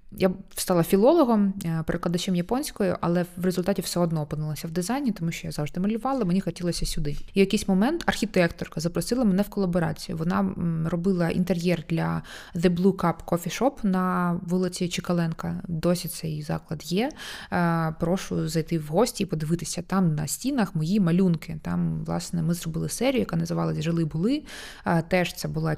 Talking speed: 155 wpm